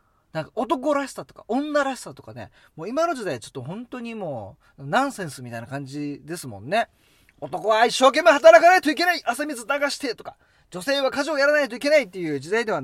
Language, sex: Japanese, male